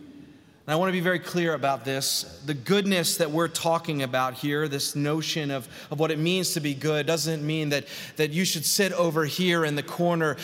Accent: American